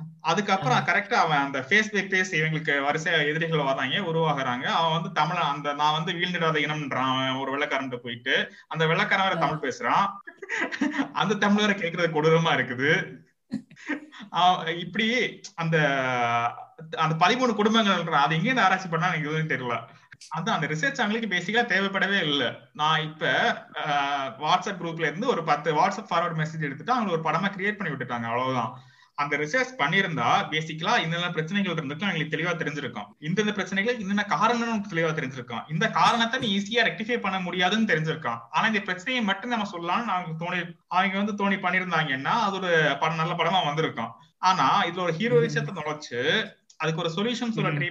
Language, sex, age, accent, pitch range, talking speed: Tamil, male, 20-39, native, 155-205 Hz, 115 wpm